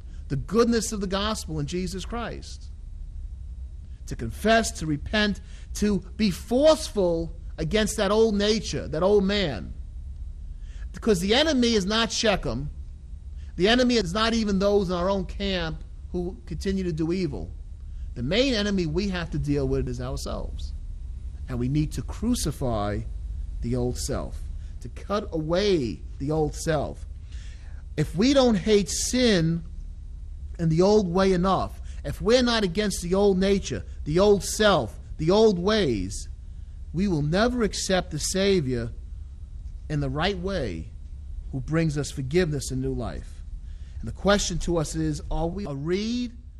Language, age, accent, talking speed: English, 40-59, American, 150 wpm